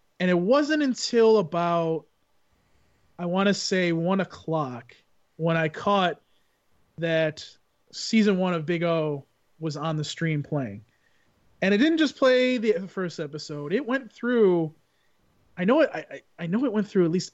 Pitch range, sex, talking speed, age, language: 150-200 Hz, male, 165 wpm, 30-49, English